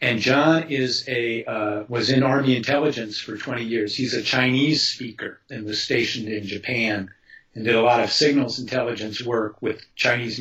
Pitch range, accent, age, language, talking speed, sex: 110-135 Hz, American, 50-69, English, 180 wpm, male